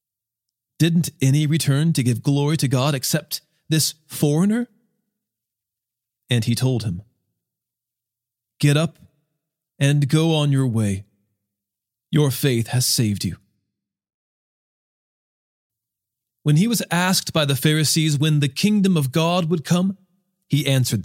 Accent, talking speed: American, 125 wpm